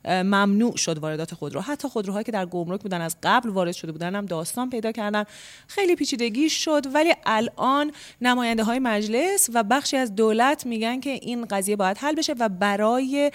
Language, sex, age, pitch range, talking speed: Persian, female, 30-49, 175-250 Hz, 180 wpm